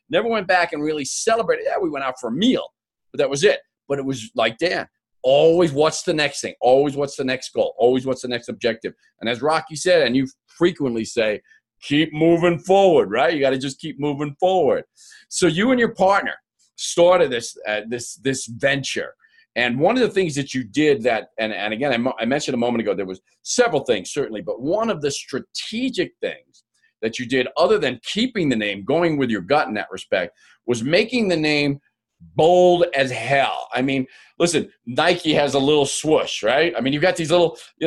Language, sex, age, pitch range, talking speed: English, male, 40-59, 135-205 Hz, 215 wpm